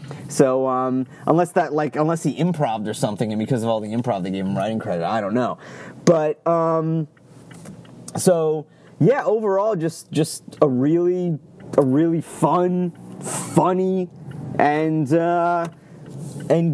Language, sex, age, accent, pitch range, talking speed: English, male, 30-49, American, 130-180 Hz, 145 wpm